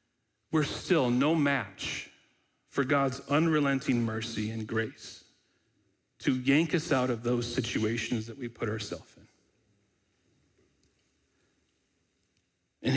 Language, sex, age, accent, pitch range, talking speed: English, male, 40-59, American, 130-165 Hz, 105 wpm